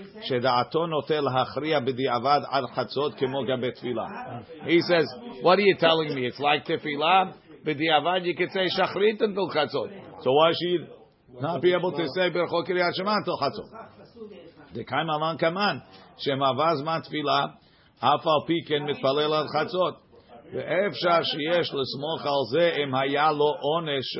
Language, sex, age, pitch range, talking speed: English, male, 50-69, 135-170 Hz, 60 wpm